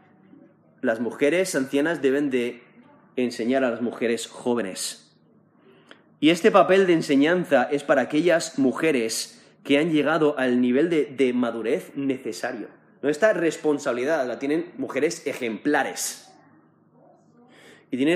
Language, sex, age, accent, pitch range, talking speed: Spanish, male, 30-49, Spanish, 130-175 Hz, 120 wpm